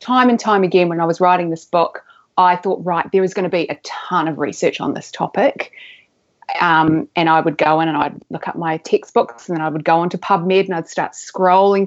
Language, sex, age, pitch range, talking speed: English, female, 30-49, 175-220 Hz, 245 wpm